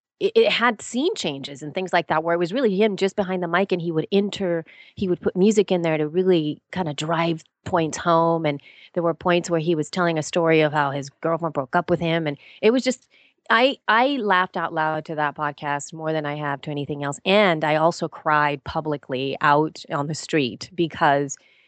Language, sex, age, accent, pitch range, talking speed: English, female, 30-49, American, 145-180 Hz, 225 wpm